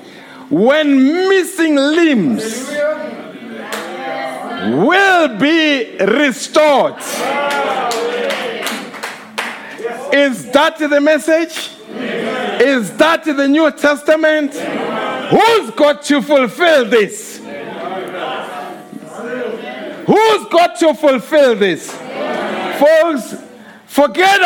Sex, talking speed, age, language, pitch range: male, 65 wpm, 60-79, English, 210-305 Hz